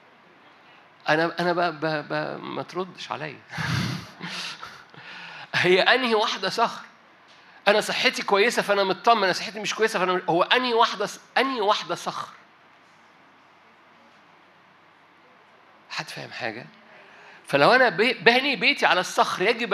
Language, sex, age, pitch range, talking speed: Arabic, male, 50-69, 160-235 Hz, 120 wpm